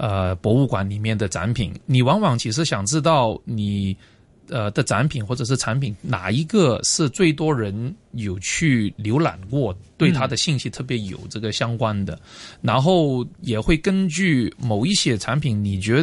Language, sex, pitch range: Chinese, male, 110-155 Hz